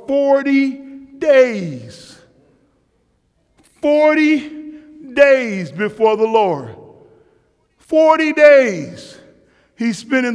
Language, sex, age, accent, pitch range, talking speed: English, male, 50-69, American, 195-235 Hz, 70 wpm